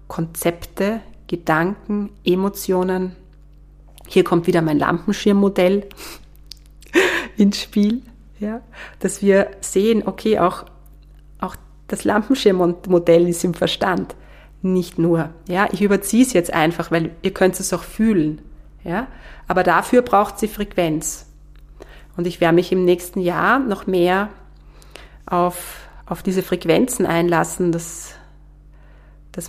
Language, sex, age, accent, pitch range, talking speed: German, female, 30-49, German, 170-200 Hz, 120 wpm